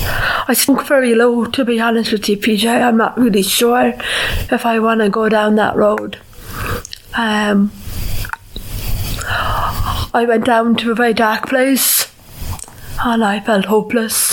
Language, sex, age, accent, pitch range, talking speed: English, female, 30-49, British, 195-250 Hz, 145 wpm